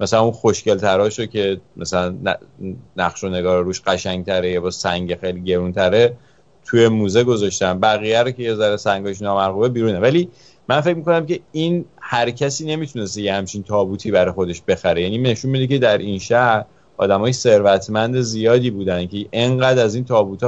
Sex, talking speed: male, 170 wpm